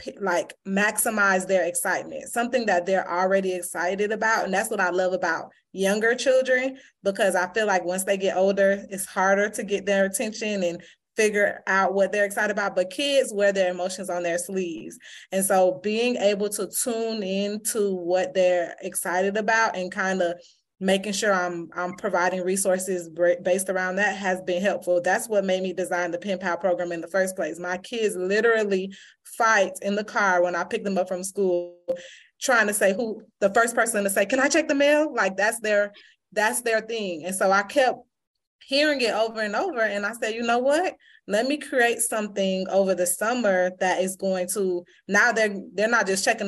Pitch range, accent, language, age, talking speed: 180-215 Hz, American, English, 20-39, 195 wpm